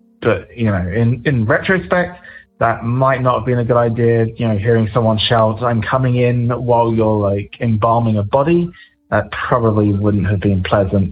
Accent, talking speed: British, 185 wpm